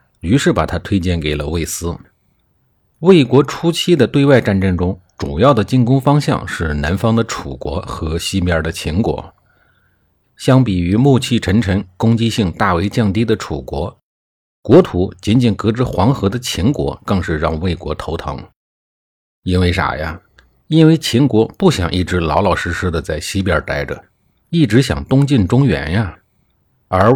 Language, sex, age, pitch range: Chinese, male, 50-69, 85-125 Hz